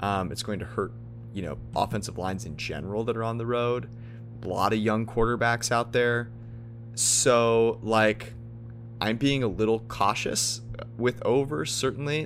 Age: 20-39